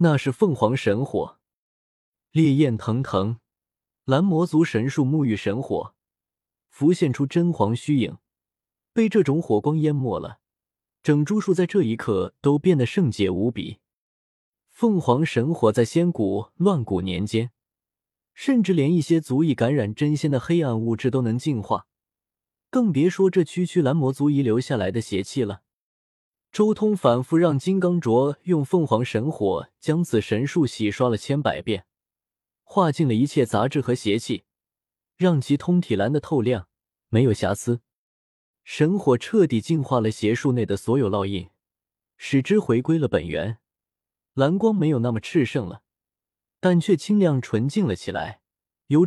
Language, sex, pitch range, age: Chinese, male, 110-165 Hz, 20-39